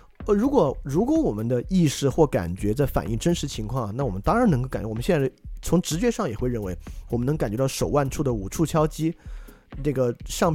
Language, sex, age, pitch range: Chinese, male, 20-39, 115-165 Hz